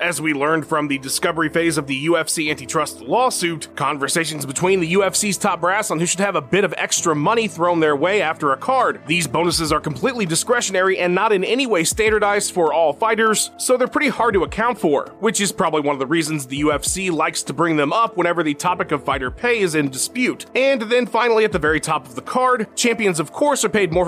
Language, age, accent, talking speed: English, 30-49, American, 230 wpm